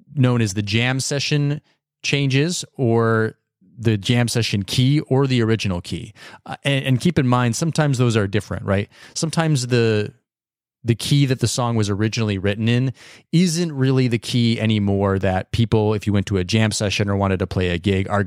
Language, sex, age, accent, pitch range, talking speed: English, male, 30-49, American, 105-135 Hz, 190 wpm